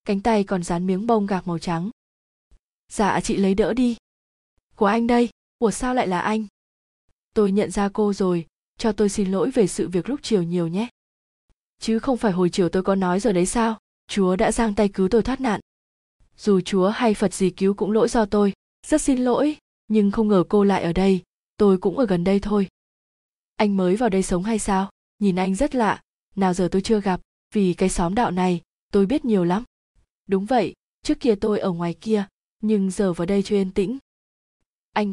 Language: Vietnamese